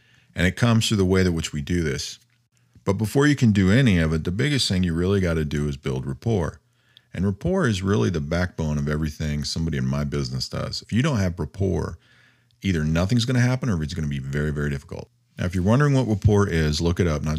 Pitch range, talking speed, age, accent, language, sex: 75-105 Hz, 250 wpm, 40-59, American, English, male